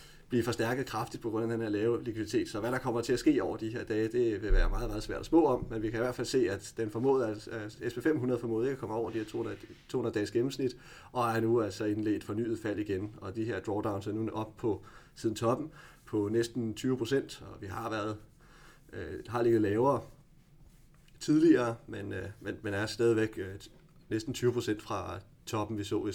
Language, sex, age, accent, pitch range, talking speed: Danish, male, 30-49, native, 110-135 Hz, 220 wpm